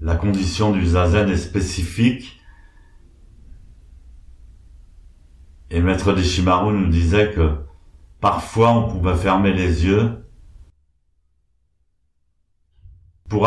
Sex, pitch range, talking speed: male, 75-95 Hz, 85 wpm